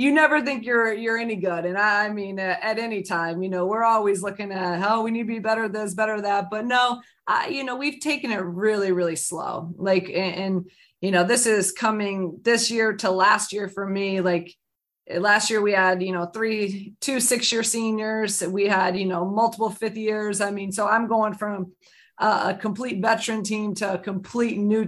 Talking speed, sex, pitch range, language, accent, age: 220 wpm, female, 190-220 Hz, English, American, 20-39